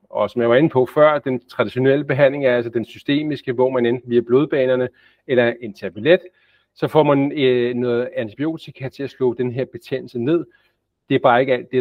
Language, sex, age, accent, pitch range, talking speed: Danish, male, 40-59, native, 115-140 Hz, 210 wpm